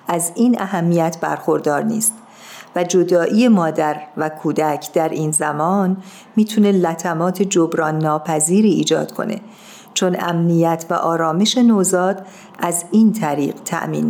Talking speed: 120 wpm